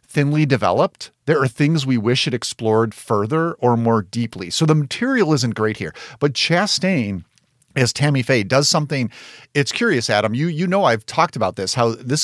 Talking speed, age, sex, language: 185 wpm, 40-59, male, English